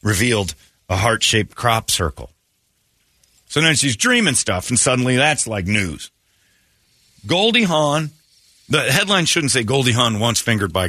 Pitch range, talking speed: 95-140 Hz, 145 wpm